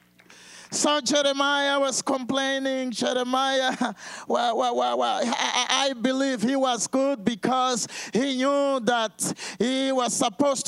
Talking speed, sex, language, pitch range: 120 wpm, male, English, 250-290 Hz